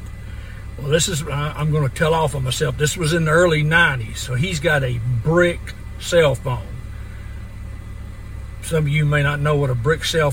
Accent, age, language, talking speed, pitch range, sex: American, 50-69, English, 185 wpm, 105-165 Hz, male